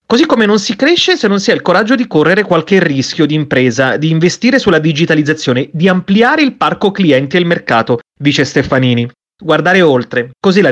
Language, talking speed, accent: Italian, 195 wpm, native